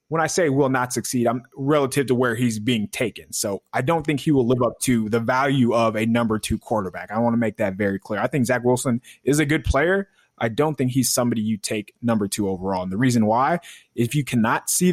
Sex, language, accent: male, English, American